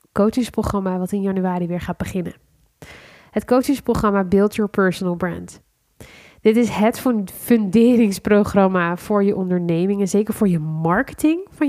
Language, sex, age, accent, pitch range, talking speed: Dutch, female, 20-39, Dutch, 185-225 Hz, 135 wpm